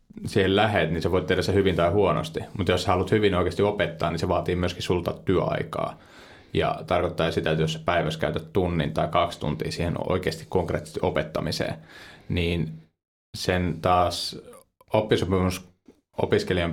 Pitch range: 85-95 Hz